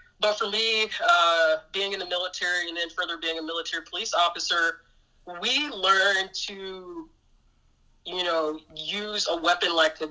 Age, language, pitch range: 20-39, English, 165-205 Hz